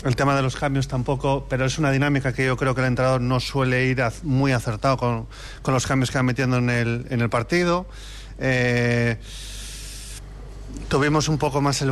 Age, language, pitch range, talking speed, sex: 30-49, Spanish, 125-145 Hz, 190 wpm, male